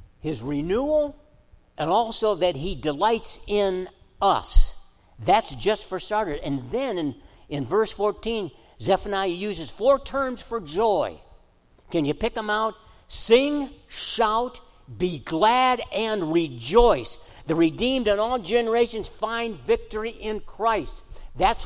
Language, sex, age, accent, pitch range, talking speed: English, male, 60-79, American, 160-235 Hz, 125 wpm